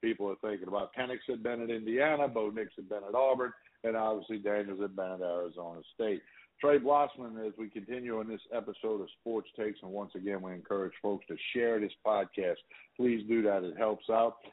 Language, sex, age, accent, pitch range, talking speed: English, male, 60-79, American, 105-135 Hz, 205 wpm